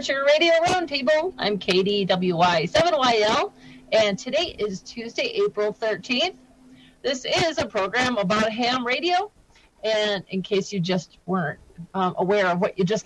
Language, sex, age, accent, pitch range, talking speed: English, female, 40-59, American, 200-300 Hz, 145 wpm